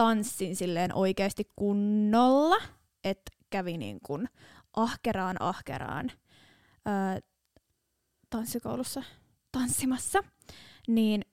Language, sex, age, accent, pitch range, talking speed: Finnish, female, 20-39, native, 205-255 Hz, 75 wpm